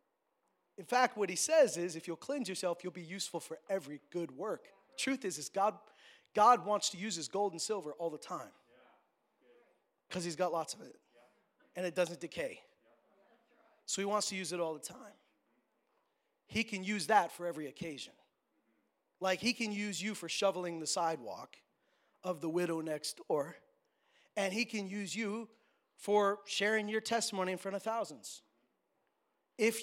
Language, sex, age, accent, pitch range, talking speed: English, male, 30-49, American, 185-245 Hz, 175 wpm